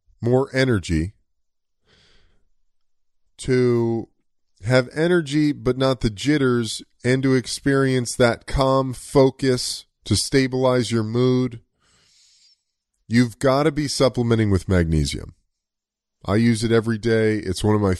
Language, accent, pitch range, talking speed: English, American, 90-115 Hz, 115 wpm